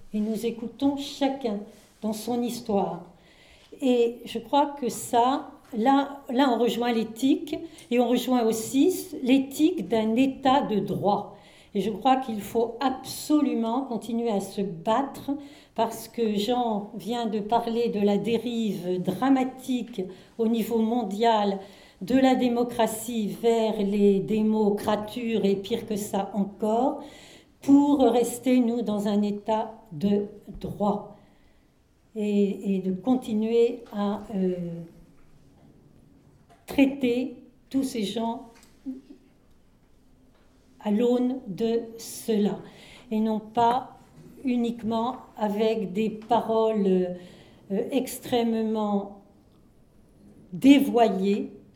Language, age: French, 60-79